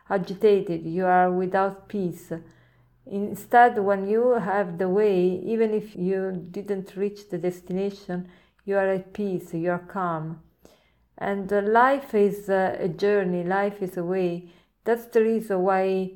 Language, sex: English, female